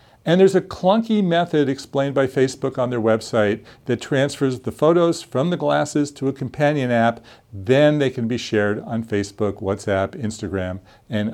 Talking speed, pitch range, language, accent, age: 170 wpm, 110-160 Hz, English, American, 50-69